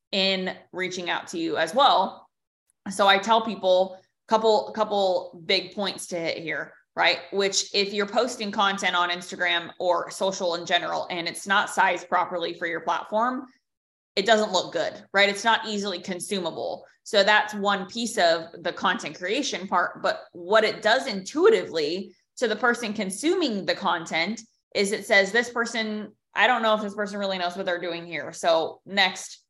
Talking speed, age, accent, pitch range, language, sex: 175 wpm, 20-39, American, 180-215 Hz, English, female